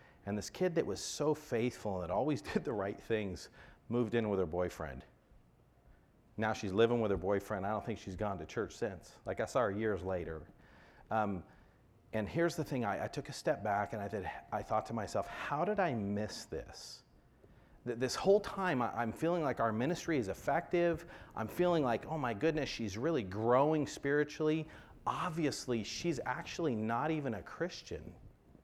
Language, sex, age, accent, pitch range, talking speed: English, male, 40-59, American, 100-140 Hz, 190 wpm